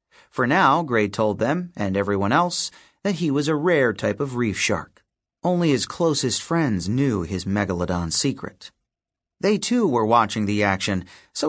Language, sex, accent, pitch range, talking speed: English, male, American, 100-150 Hz, 165 wpm